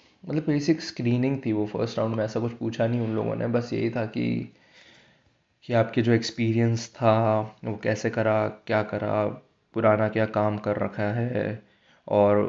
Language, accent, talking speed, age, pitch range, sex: Hindi, native, 175 wpm, 20-39, 110-130 Hz, male